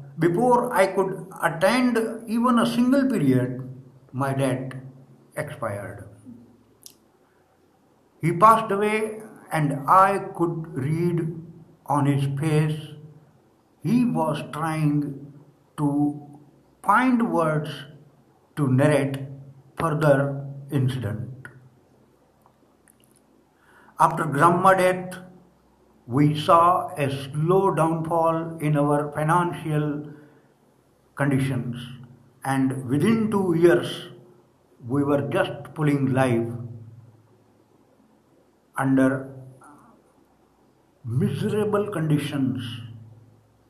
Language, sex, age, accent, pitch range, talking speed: Hindi, male, 60-79, native, 125-165 Hz, 75 wpm